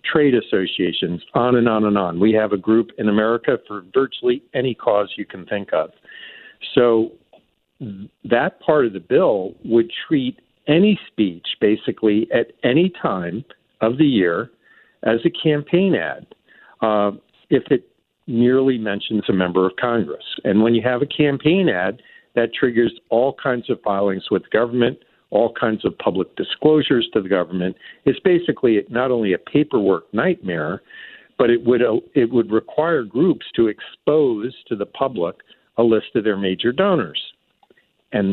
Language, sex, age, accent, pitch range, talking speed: English, male, 50-69, American, 105-140 Hz, 155 wpm